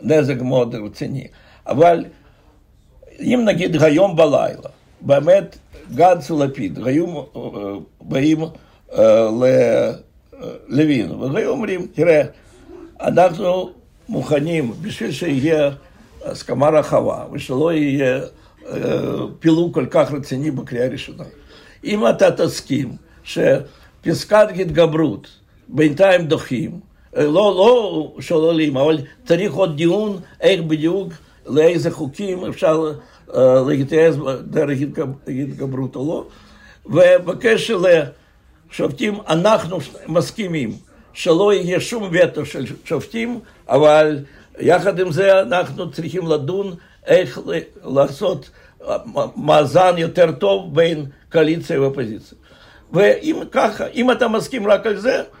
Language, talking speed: Hebrew, 100 wpm